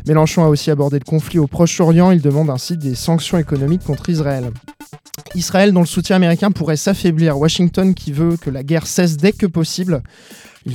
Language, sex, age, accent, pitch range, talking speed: French, male, 20-39, French, 145-170 Hz, 190 wpm